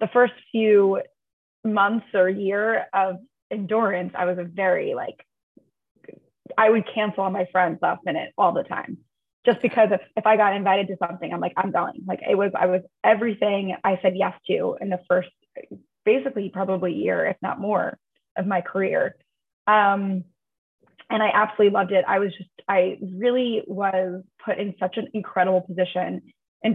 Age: 20-39